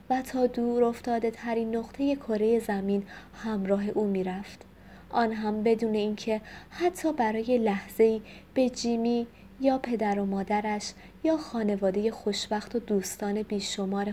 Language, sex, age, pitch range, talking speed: Persian, female, 20-39, 200-245 Hz, 135 wpm